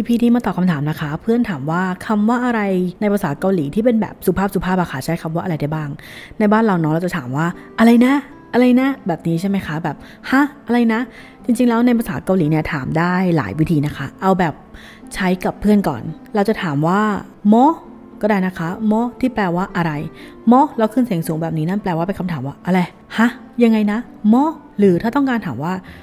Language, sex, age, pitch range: Korean, female, 20-39, 175-230 Hz